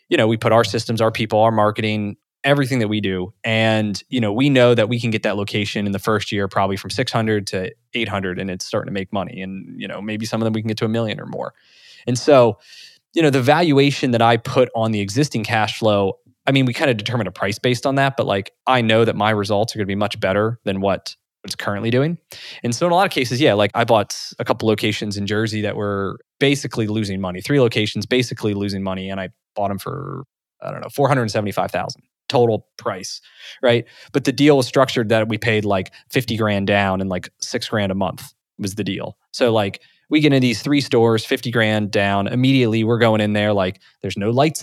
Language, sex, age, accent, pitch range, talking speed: English, male, 20-39, American, 100-125 Hz, 240 wpm